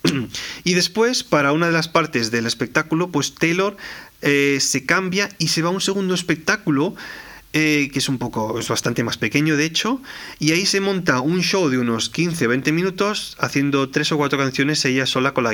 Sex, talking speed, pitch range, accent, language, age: male, 205 wpm, 130-180 Hz, Spanish, Spanish, 30-49